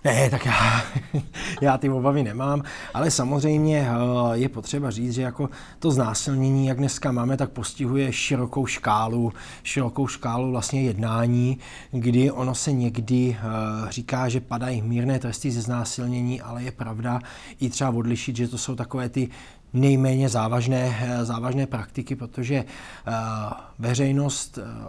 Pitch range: 120-135 Hz